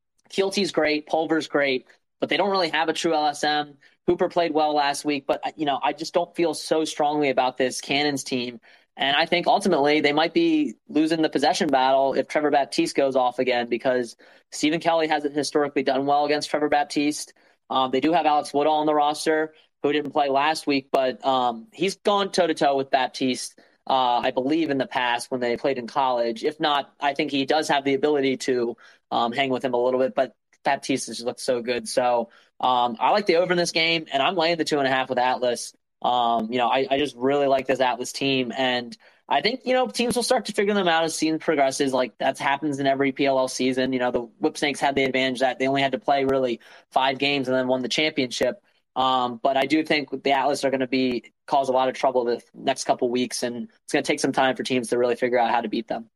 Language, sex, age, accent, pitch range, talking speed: English, male, 20-39, American, 130-155 Hz, 240 wpm